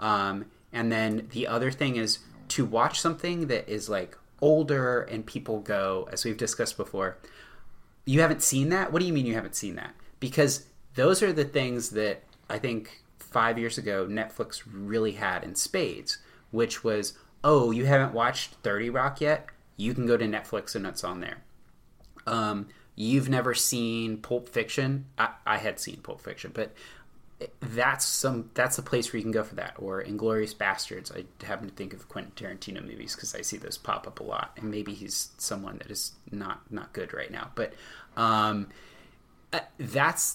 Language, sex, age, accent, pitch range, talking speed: English, male, 30-49, American, 110-130 Hz, 185 wpm